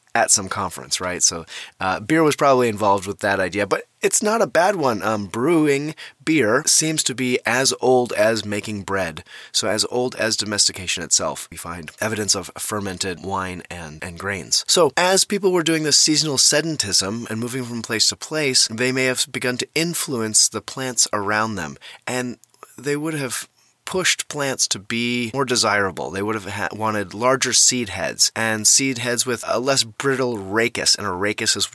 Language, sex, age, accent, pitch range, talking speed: English, male, 20-39, American, 100-130 Hz, 185 wpm